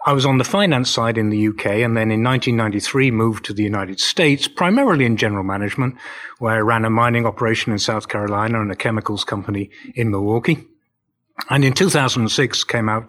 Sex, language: male, English